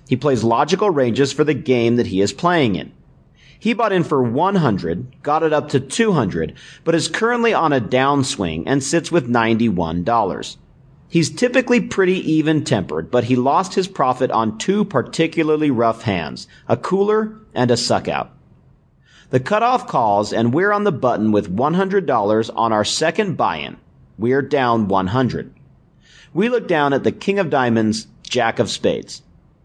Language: English